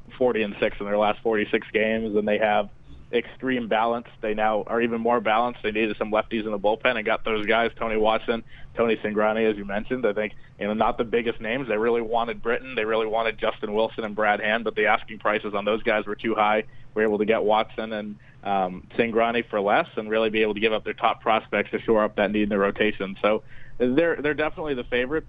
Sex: male